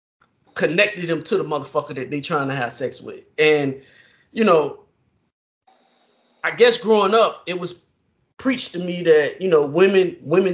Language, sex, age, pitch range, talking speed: English, male, 20-39, 175-240 Hz, 165 wpm